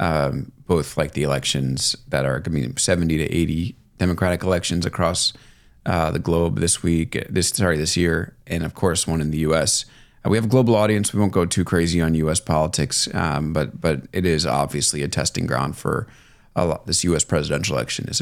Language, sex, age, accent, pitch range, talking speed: English, male, 30-49, American, 80-115 Hz, 200 wpm